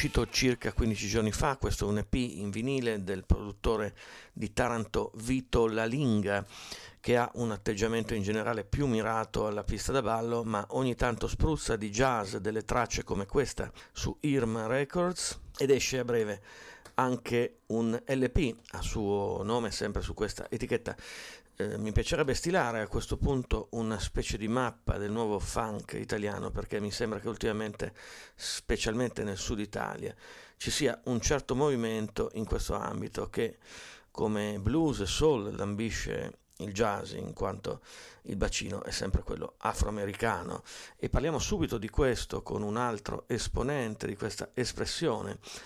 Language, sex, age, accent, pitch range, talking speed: Italian, male, 50-69, native, 105-120 Hz, 150 wpm